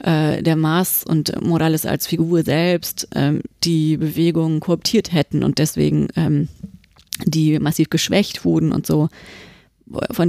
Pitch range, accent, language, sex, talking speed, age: 155-175 Hz, German, German, female, 130 wpm, 30-49